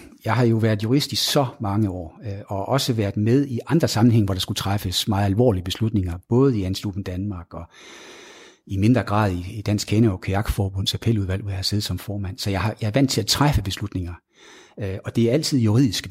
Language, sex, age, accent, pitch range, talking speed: Danish, male, 60-79, native, 100-120 Hz, 210 wpm